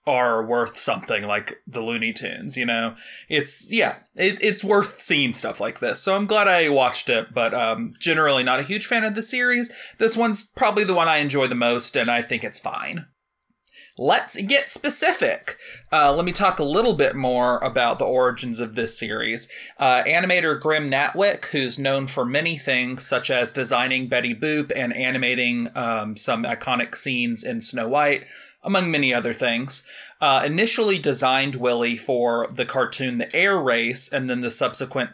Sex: male